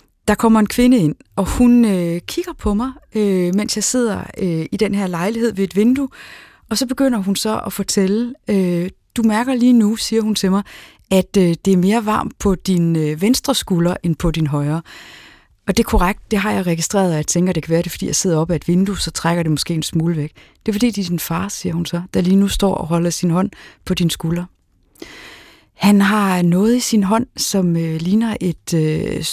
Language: Danish